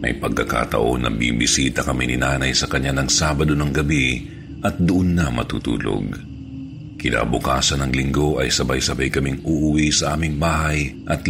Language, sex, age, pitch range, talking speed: Filipino, male, 50-69, 70-85 Hz, 150 wpm